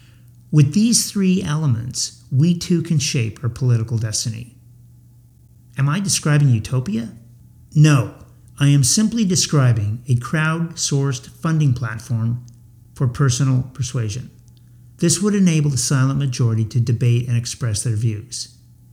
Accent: American